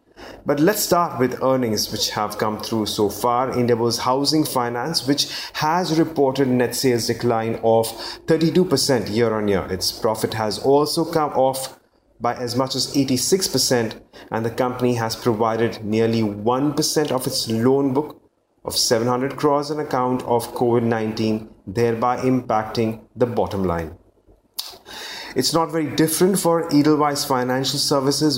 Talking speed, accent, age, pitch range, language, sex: 145 wpm, Indian, 30-49, 115-140 Hz, English, male